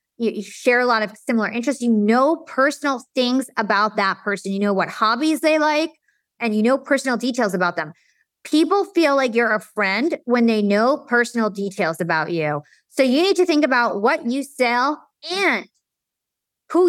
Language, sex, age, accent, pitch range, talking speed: English, female, 20-39, American, 205-270 Hz, 180 wpm